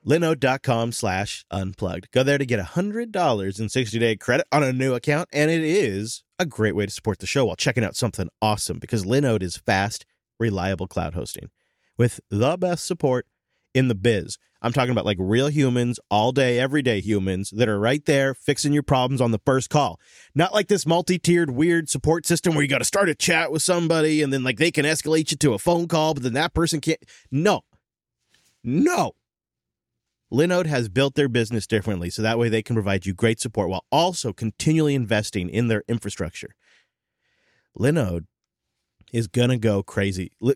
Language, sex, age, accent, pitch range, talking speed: English, male, 30-49, American, 110-155 Hz, 190 wpm